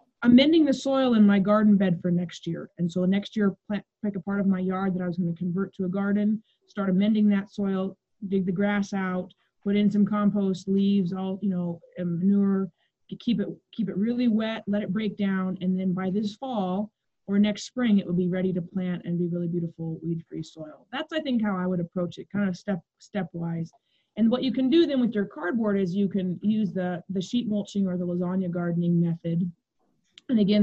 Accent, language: American, English